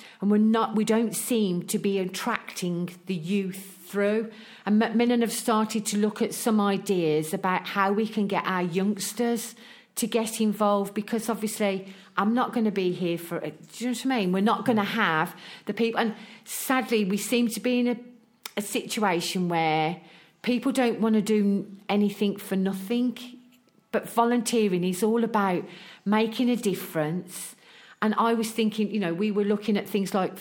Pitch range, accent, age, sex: 195-240 Hz, British, 40-59, female